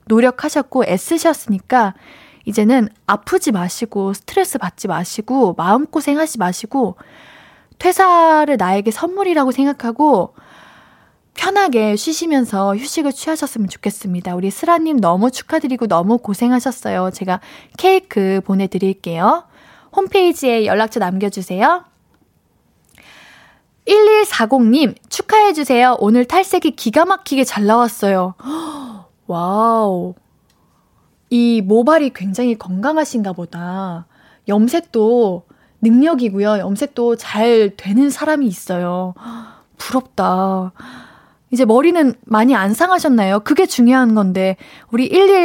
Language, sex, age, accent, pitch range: Korean, female, 20-39, native, 200-300 Hz